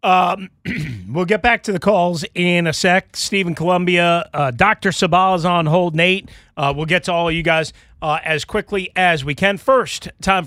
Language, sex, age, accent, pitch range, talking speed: English, male, 40-59, American, 135-180 Hz, 200 wpm